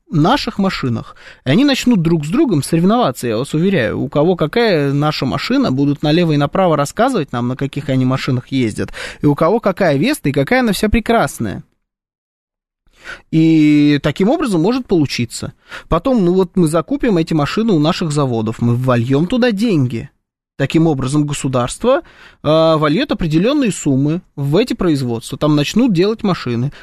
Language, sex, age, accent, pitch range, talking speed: Russian, male, 20-39, native, 145-205 Hz, 160 wpm